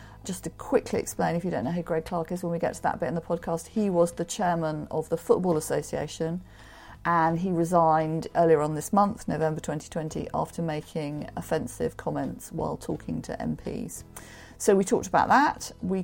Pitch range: 150-180 Hz